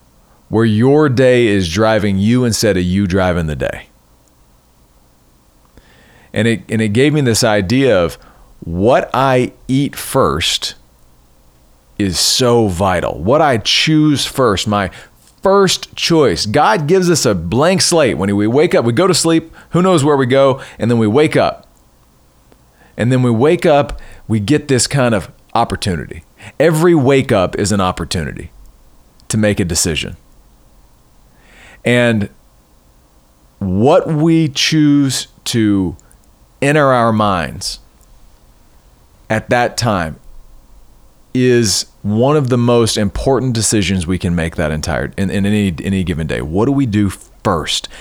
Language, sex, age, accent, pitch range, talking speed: English, male, 40-59, American, 90-130 Hz, 140 wpm